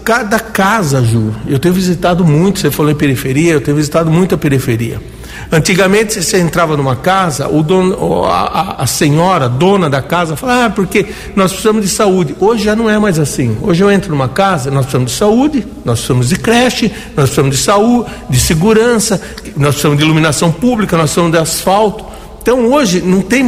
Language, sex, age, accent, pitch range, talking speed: Portuguese, male, 60-79, Brazilian, 140-195 Hz, 195 wpm